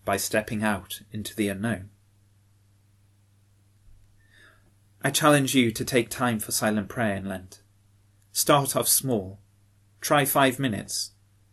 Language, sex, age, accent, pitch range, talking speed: English, male, 30-49, British, 100-120 Hz, 120 wpm